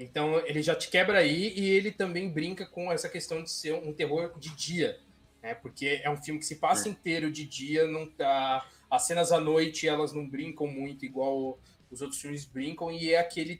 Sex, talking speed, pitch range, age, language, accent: male, 210 wpm, 140-175 Hz, 20-39, Portuguese, Brazilian